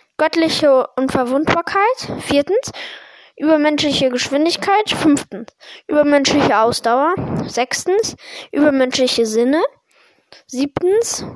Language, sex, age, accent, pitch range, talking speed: German, female, 10-29, German, 260-325 Hz, 65 wpm